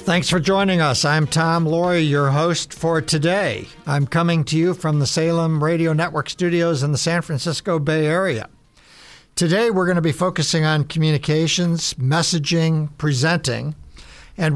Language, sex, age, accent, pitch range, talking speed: English, male, 60-79, American, 140-165 Hz, 155 wpm